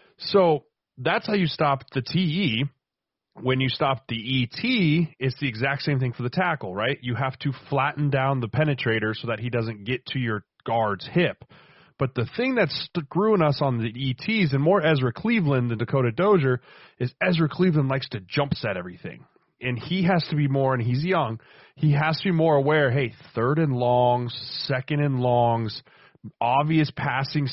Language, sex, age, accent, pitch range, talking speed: English, male, 30-49, American, 120-155 Hz, 185 wpm